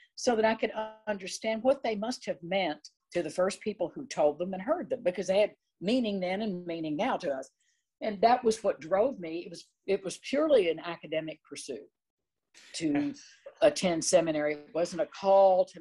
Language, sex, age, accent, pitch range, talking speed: English, female, 50-69, American, 155-220 Hz, 195 wpm